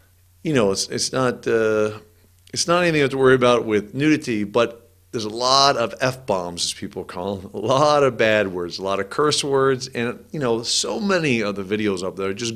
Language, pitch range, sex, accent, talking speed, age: English, 95-130 Hz, male, American, 210 wpm, 50-69